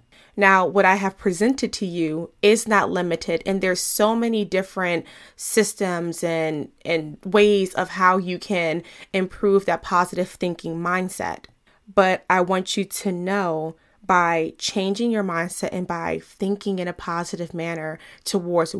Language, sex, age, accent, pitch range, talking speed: English, female, 20-39, American, 175-205 Hz, 145 wpm